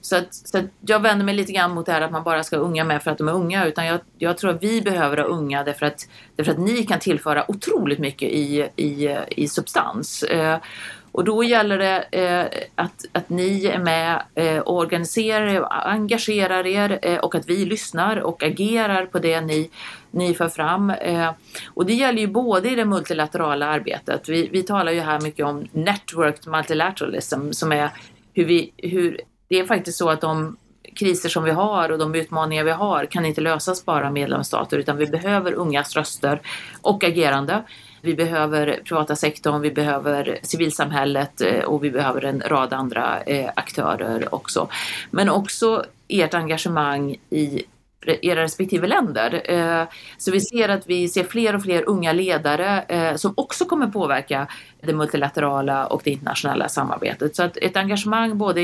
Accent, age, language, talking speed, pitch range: native, 30-49, Swedish, 180 wpm, 150-190 Hz